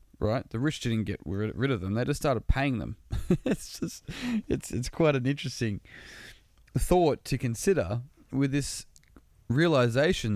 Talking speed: 150 wpm